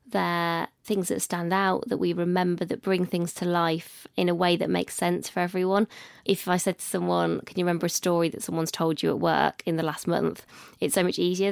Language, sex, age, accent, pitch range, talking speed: English, female, 20-39, British, 170-195 Hz, 235 wpm